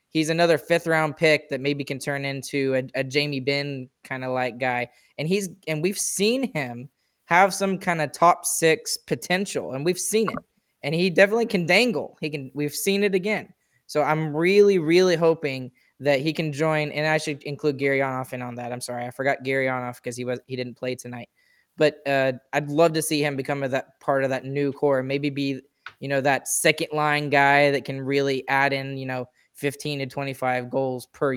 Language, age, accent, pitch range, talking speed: English, 20-39, American, 135-170 Hz, 215 wpm